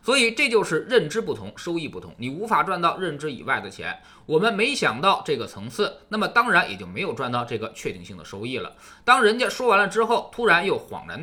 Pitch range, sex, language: 185-260 Hz, male, Chinese